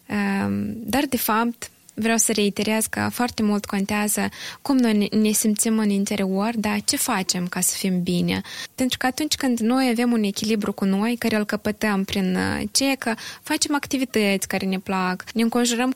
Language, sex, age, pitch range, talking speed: Romanian, female, 20-39, 205-255 Hz, 175 wpm